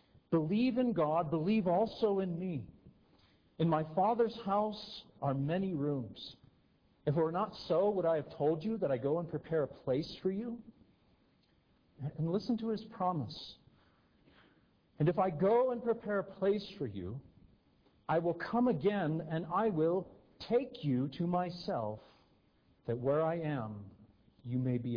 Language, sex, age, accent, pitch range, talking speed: English, male, 50-69, American, 125-185 Hz, 160 wpm